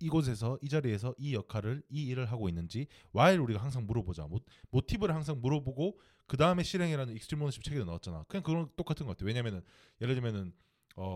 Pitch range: 95-150 Hz